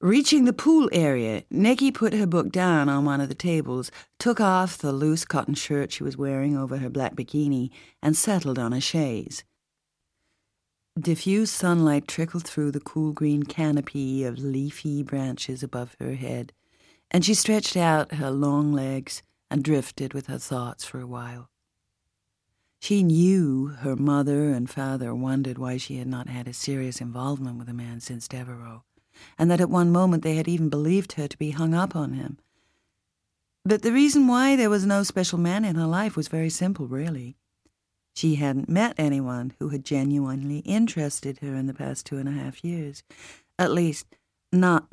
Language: English